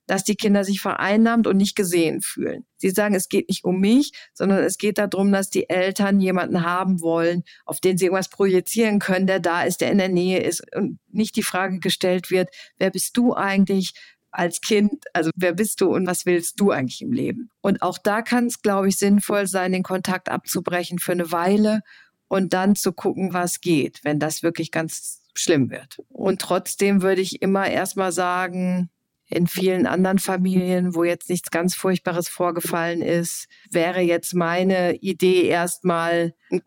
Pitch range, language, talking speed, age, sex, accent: 180-200 Hz, German, 185 wpm, 50-69, female, German